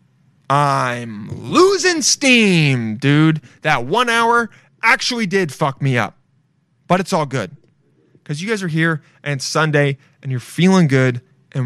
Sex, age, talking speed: male, 20-39, 145 wpm